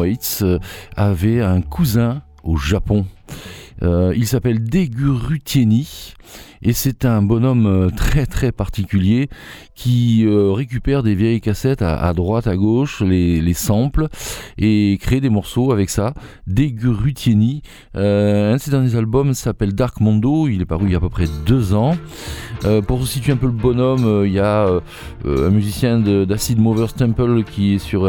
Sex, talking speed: male, 165 wpm